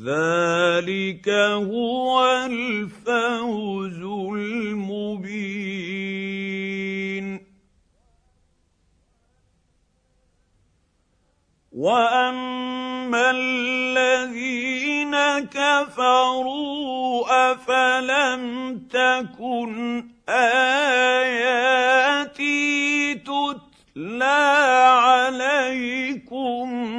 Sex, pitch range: male, 195-255 Hz